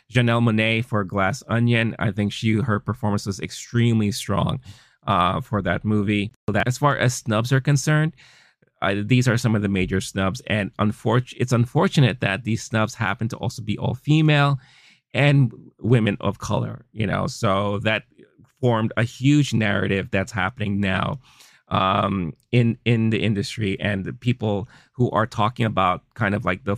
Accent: American